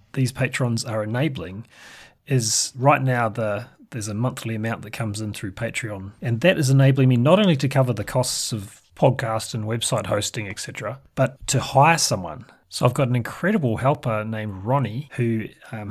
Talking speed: 180 wpm